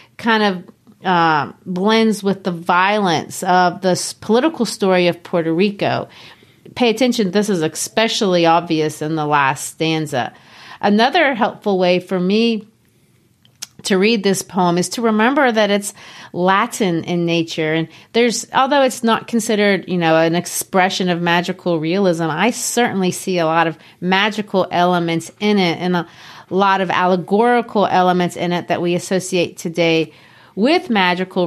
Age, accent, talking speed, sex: 40-59, American, 150 wpm, female